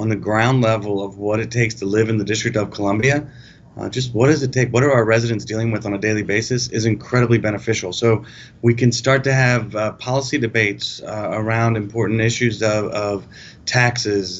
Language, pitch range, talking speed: English, 105-120 Hz, 210 wpm